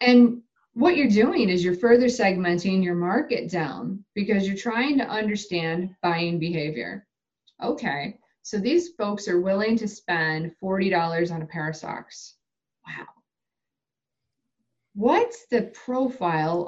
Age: 30-49